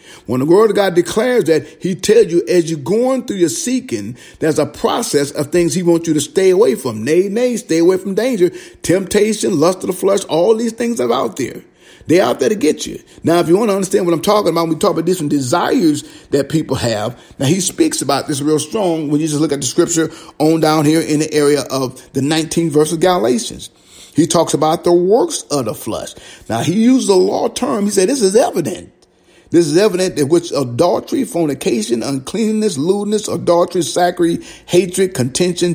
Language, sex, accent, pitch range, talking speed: English, male, American, 155-205 Hz, 215 wpm